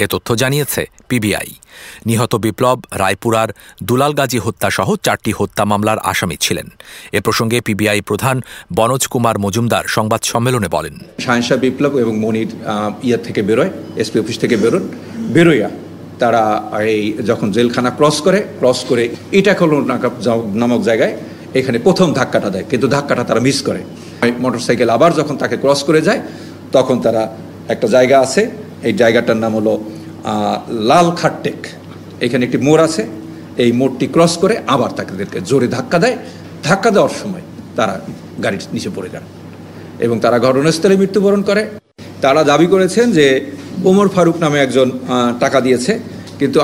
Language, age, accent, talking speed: English, 50-69, Indian, 80 wpm